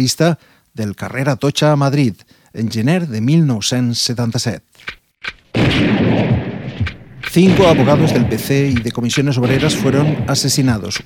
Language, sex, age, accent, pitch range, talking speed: Spanish, male, 40-59, Spanish, 125-150 Hz, 105 wpm